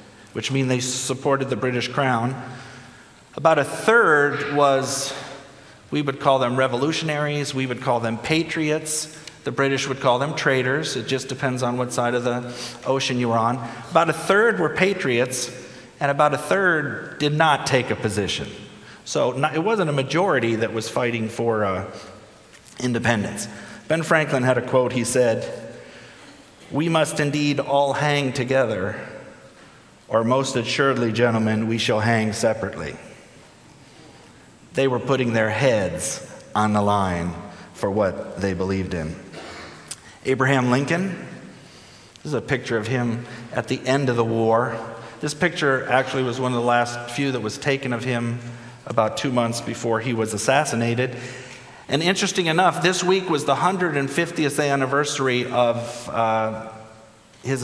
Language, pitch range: English, 115-140 Hz